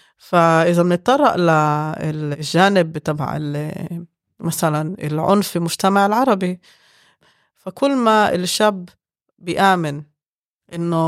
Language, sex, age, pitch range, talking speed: Arabic, female, 20-39, 165-215 Hz, 75 wpm